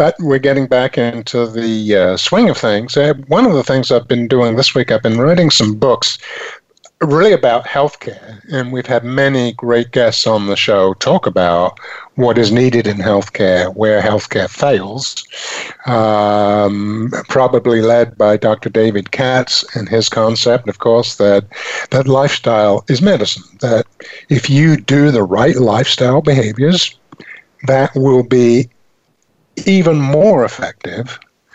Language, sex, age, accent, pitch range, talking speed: English, male, 50-69, American, 110-145 Hz, 145 wpm